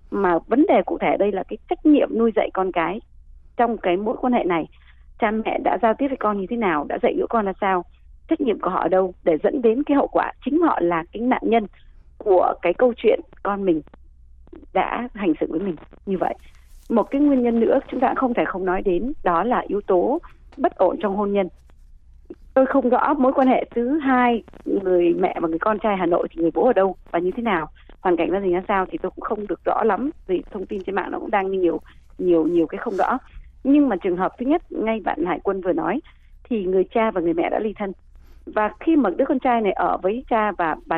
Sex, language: female, Vietnamese